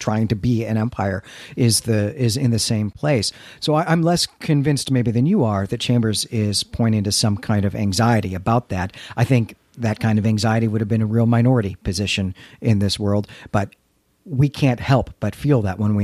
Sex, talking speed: male, 215 wpm